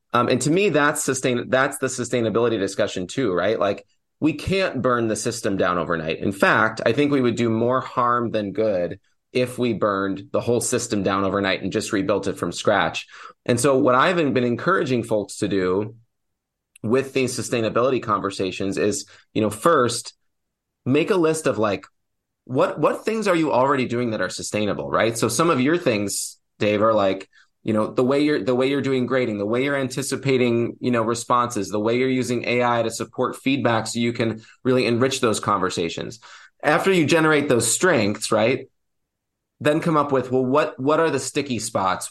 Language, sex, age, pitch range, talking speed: English, male, 20-39, 110-135 Hz, 190 wpm